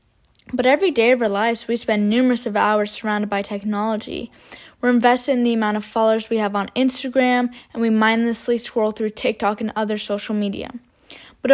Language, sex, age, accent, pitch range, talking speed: English, female, 10-29, American, 215-240 Hz, 185 wpm